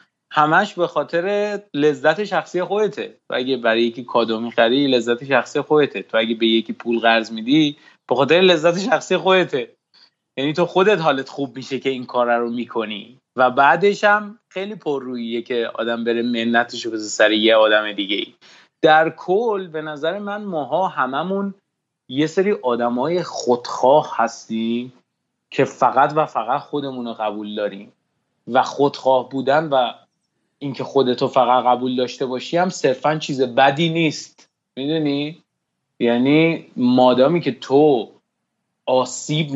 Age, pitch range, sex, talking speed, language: 30-49, 120-155 Hz, male, 140 wpm, Persian